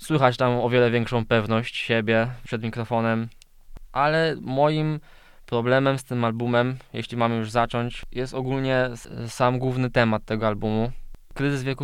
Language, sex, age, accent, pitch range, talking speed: Polish, male, 20-39, native, 115-135 Hz, 140 wpm